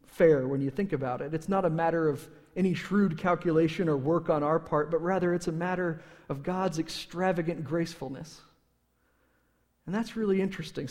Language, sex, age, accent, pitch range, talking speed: English, male, 40-59, American, 150-185 Hz, 175 wpm